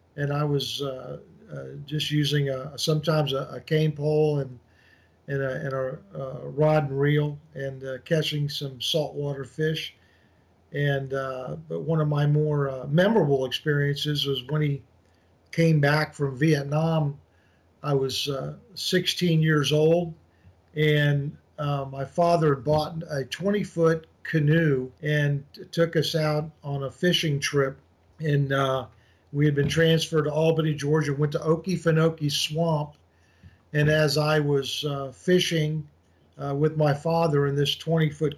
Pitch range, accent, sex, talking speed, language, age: 135-155 Hz, American, male, 140 wpm, English, 50-69